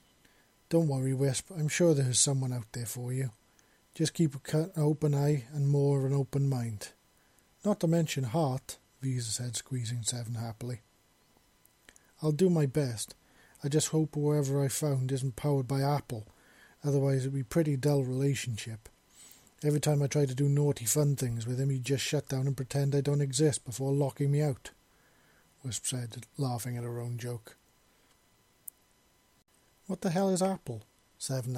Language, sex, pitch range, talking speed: English, male, 125-145 Hz, 175 wpm